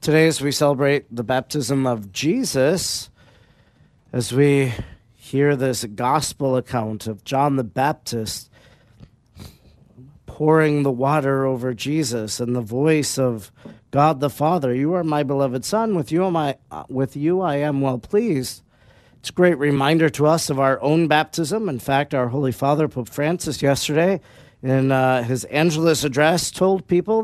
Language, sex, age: English, male, 40-59